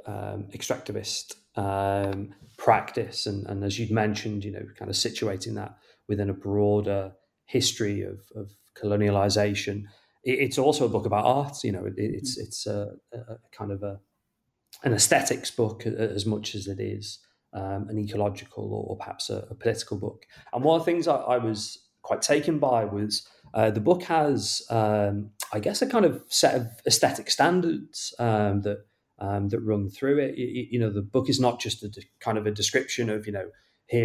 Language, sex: English, male